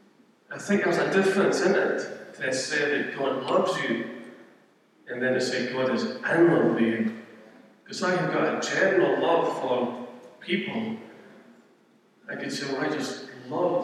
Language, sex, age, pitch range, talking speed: English, male, 40-59, 130-170 Hz, 170 wpm